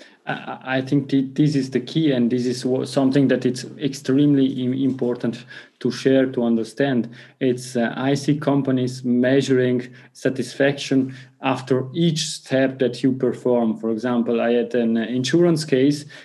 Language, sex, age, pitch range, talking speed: English, male, 20-39, 125-140 Hz, 140 wpm